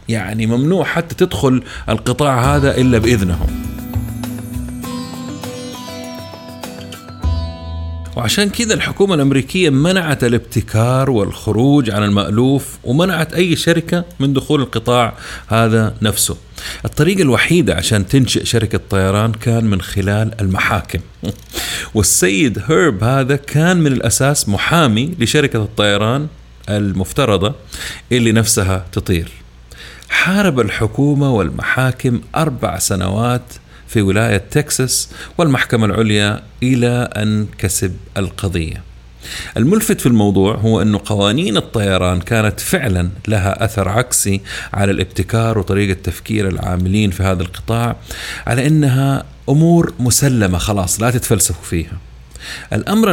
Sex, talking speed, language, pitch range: male, 105 wpm, Arabic, 95-130 Hz